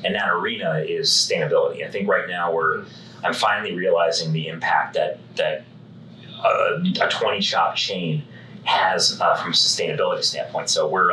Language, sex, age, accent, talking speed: English, male, 30-49, American, 160 wpm